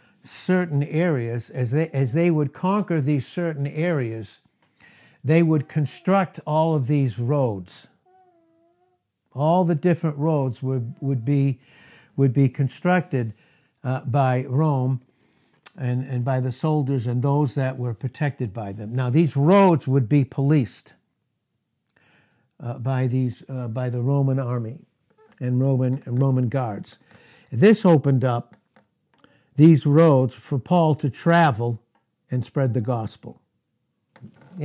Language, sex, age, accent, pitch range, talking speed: English, male, 60-79, American, 125-155 Hz, 130 wpm